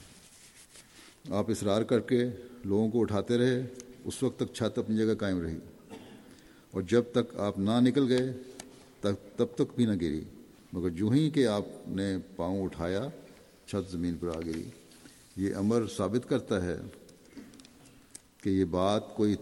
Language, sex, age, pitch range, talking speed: Urdu, male, 50-69, 95-115 Hz, 160 wpm